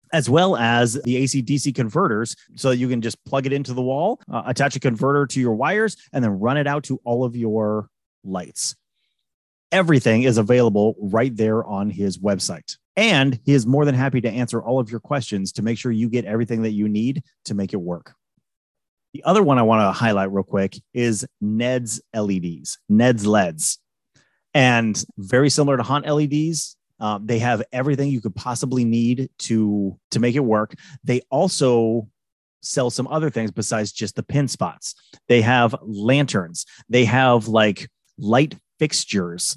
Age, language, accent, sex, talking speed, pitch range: 30-49, English, American, male, 175 wpm, 105-135 Hz